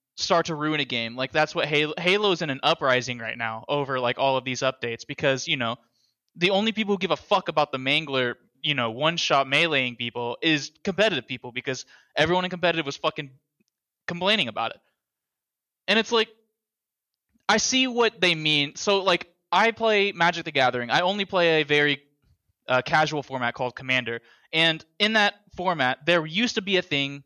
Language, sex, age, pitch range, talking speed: English, male, 20-39, 135-190 Hz, 190 wpm